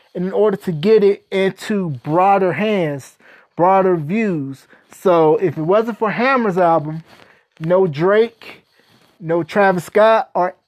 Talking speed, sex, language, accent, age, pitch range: 130 wpm, male, English, American, 30-49, 185-230 Hz